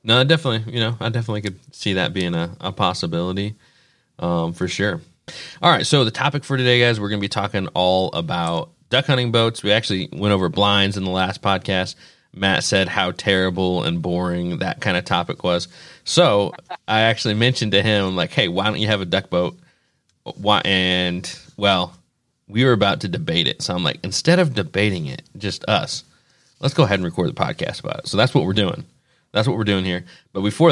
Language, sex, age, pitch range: English, male, 30-49, 95-115 Hz